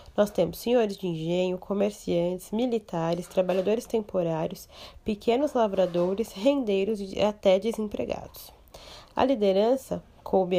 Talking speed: 100 wpm